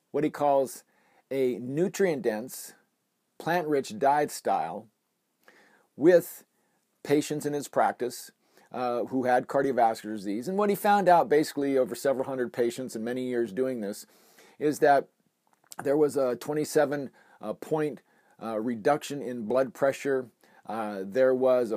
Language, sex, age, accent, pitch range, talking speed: English, male, 50-69, American, 120-145 Hz, 130 wpm